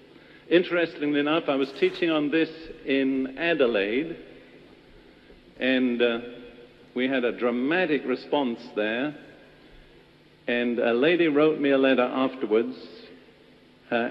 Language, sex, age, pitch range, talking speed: English, male, 50-69, 125-165 Hz, 110 wpm